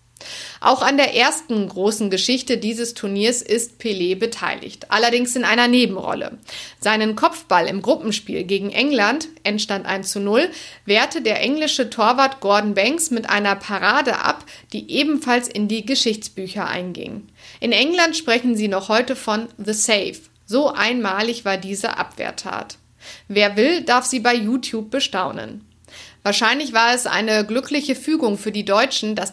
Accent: German